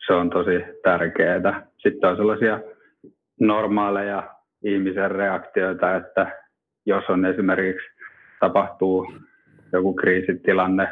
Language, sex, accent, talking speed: Finnish, male, native, 95 wpm